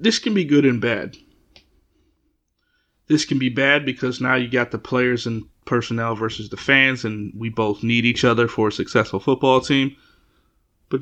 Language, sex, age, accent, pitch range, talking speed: English, male, 30-49, American, 120-145 Hz, 180 wpm